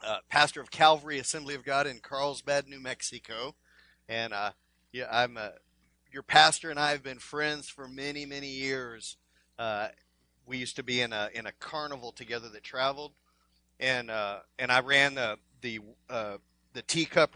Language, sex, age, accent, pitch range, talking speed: English, male, 40-59, American, 120-150 Hz, 170 wpm